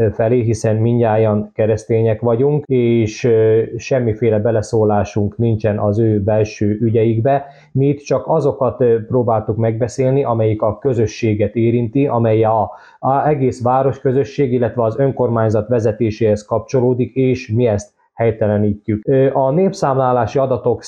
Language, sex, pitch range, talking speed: Hungarian, male, 110-135 Hz, 110 wpm